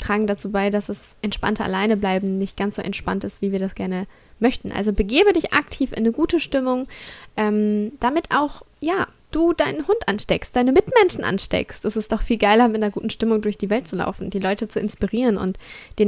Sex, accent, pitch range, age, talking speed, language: female, German, 200-255 Hz, 20-39, 210 wpm, German